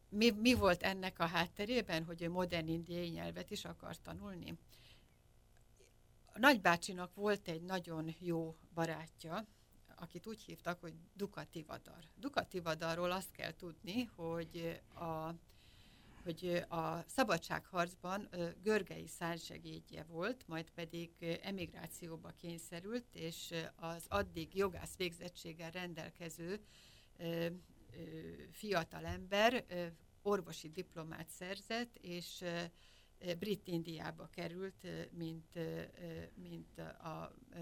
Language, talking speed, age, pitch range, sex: Hungarian, 95 wpm, 60-79, 165-185 Hz, female